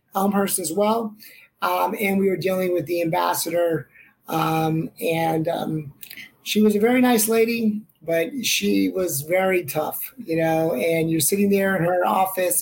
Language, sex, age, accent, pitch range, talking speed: English, male, 30-49, American, 165-195 Hz, 160 wpm